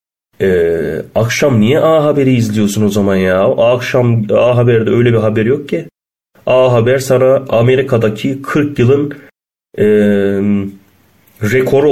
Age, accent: 30-49, native